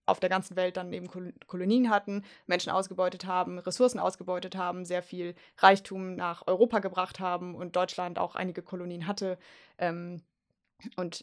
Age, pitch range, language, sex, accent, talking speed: 20-39, 180-195 Hz, German, female, German, 155 wpm